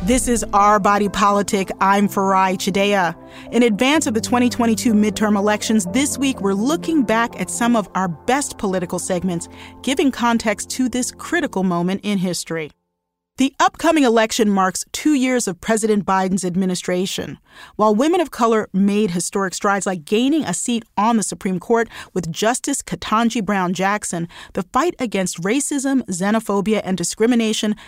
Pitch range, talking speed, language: 190-250 Hz, 155 wpm, English